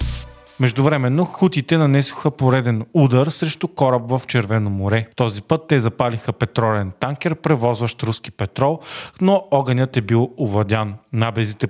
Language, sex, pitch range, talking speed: Bulgarian, male, 115-150 Hz, 130 wpm